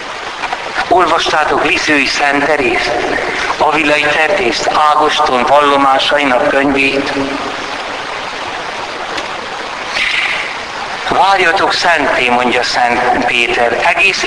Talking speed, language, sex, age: 60 wpm, Hungarian, male, 60-79